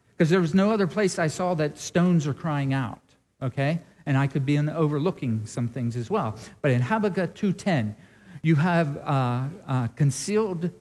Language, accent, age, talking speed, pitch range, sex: English, American, 50-69, 190 wpm, 135-180 Hz, male